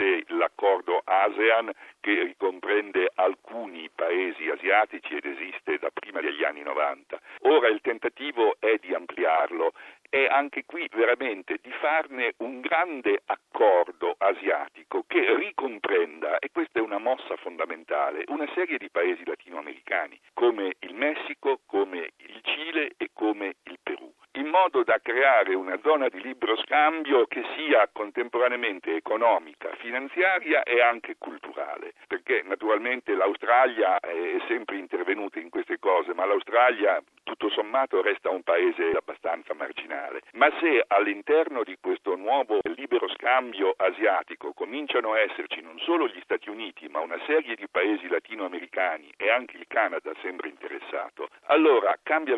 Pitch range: 310-425 Hz